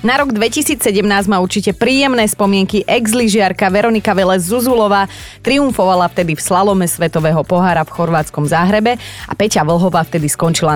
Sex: female